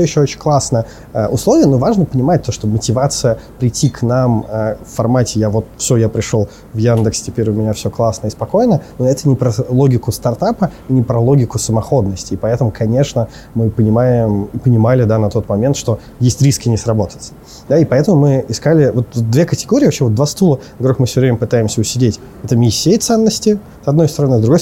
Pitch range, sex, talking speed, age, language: 110-130 Hz, male, 195 wpm, 20-39, Russian